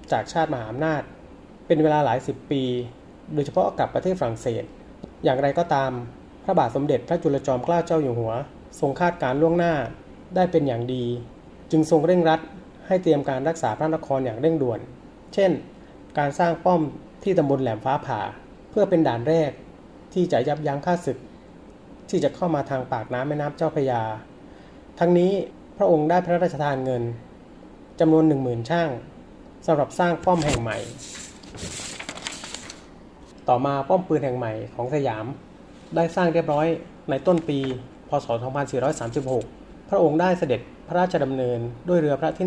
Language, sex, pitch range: Thai, male, 130-170 Hz